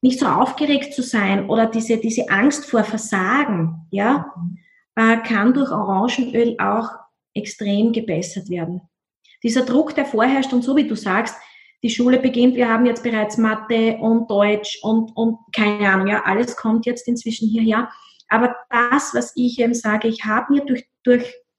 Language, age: German, 20-39